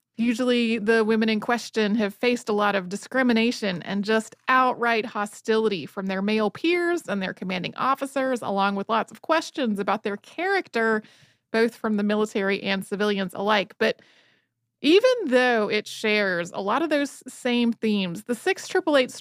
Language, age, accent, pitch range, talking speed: English, 30-49, American, 210-260 Hz, 160 wpm